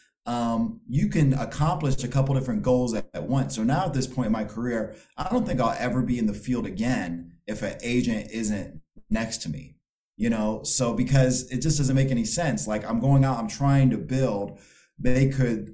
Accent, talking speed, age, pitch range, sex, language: American, 215 wpm, 30-49, 115-135 Hz, male, English